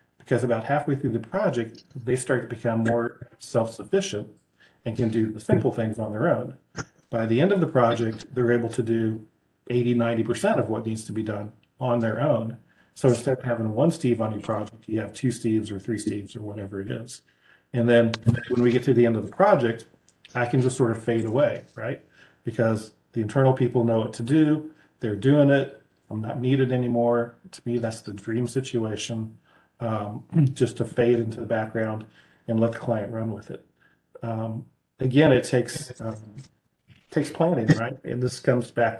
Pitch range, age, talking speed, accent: 110-125 Hz, 40-59, 200 wpm, American